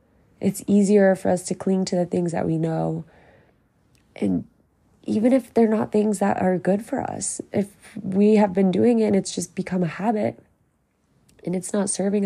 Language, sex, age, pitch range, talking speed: English, female, 20-39, 175-200 Hz, 190 wpm